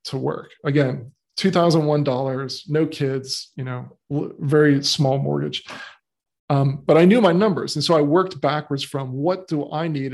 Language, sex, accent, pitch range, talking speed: English, male, American, 140-165 Hz, 160 wpm